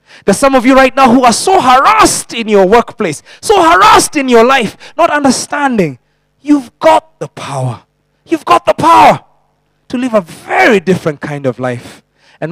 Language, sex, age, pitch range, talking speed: English, male, 20-39, 165-265 Hz, 175 wpm